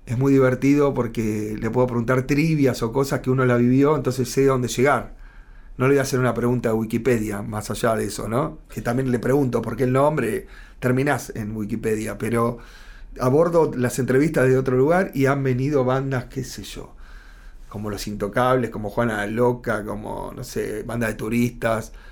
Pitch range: 115-130 Hz